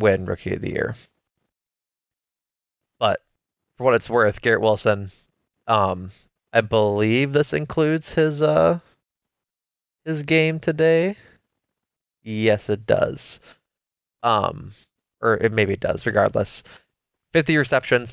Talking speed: 110 wpm